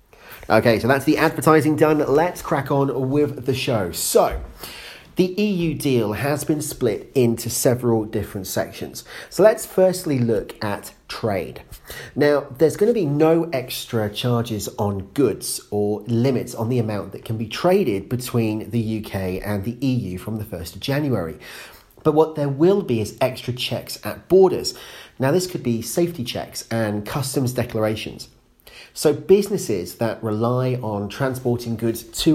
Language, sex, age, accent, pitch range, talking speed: English, male, 40-59, British, 110-150 Hz, 160 wpm